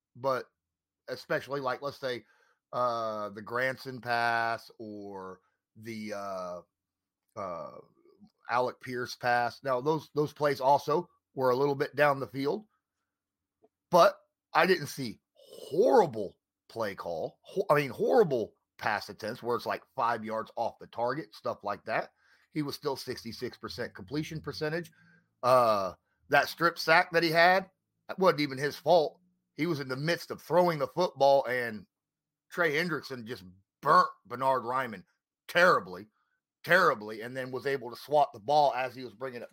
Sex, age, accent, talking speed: male, 30-49, American, 155 wpm